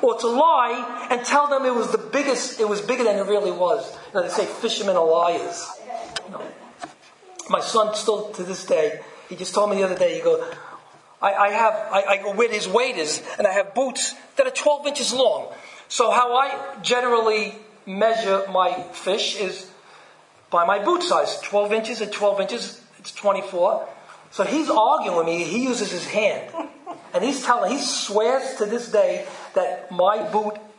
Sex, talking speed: male, 190 wpm